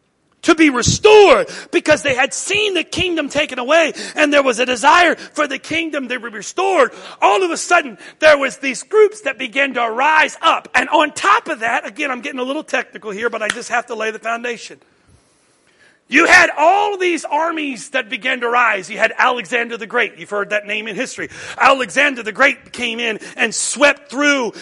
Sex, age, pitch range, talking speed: male, 40-59, 240-320 Hz, 200 wpm